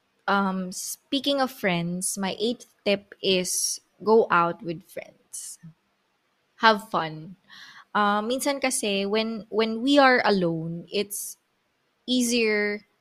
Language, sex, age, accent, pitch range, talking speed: Filipino, female, 20-39, native, 185-225 Hz, 110 wpm